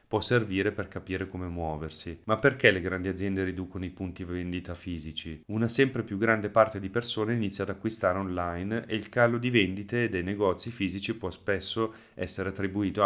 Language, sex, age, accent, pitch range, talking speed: Italian, male, 30-49, native, 90-105 Hz, 180 wpm